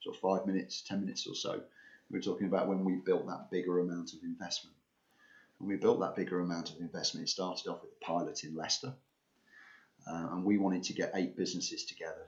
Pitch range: 85-110 Hz